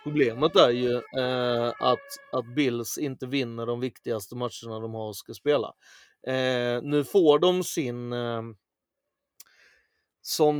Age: 30-49